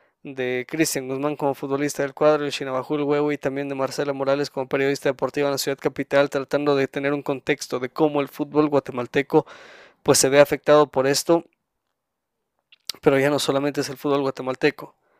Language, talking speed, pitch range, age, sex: Spanish, 180 wpm, 135-155 Hz, 20-39, male